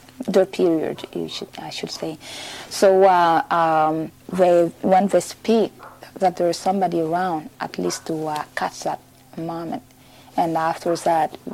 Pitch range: 165-195 Hz